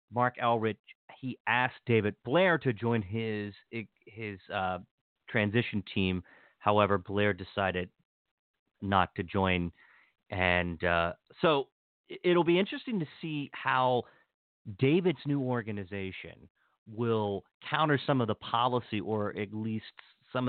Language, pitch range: English, 105-135 Hz